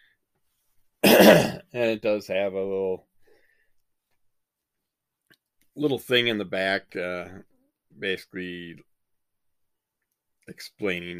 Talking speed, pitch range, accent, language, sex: 75 wpm, 95-115 Hz, American, English, male